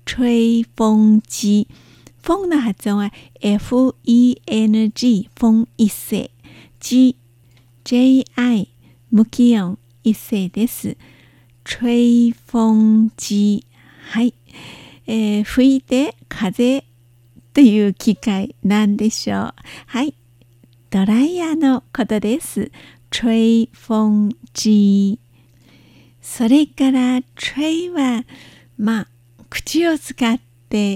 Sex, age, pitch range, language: female, 50-69, 200-255 Hz, Japanese